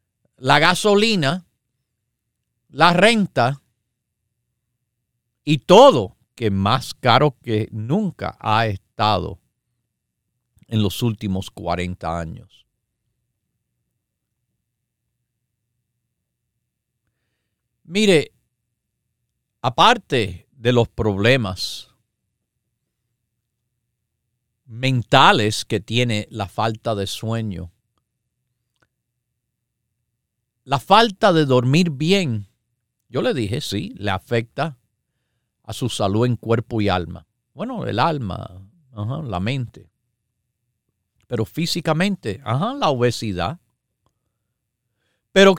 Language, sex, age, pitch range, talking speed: Spanish, male, 50-69, 110-140 Hz, 80 wpm